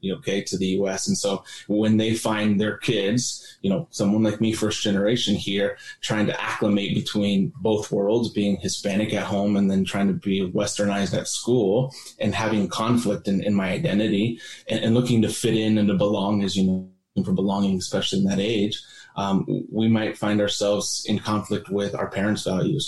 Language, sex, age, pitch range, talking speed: English, male, 20-39, 100-110 Hz, 195 wpm